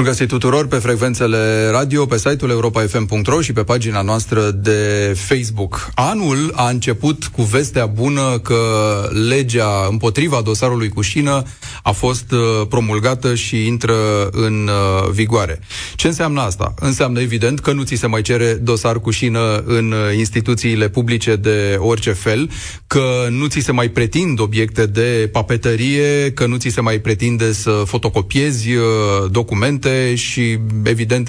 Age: 30-49